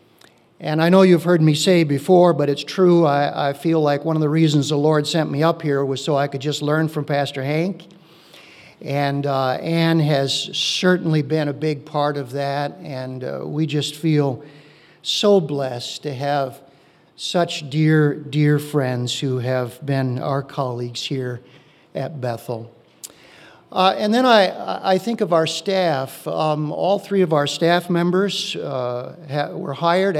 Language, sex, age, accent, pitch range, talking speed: English, male, 50-69, American, 145-180 Hz, 170 wpm